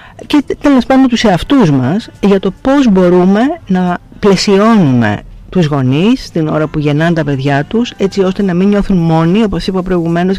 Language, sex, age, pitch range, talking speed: Greek, female, 50-69, 150-220 Hz, 175 wpm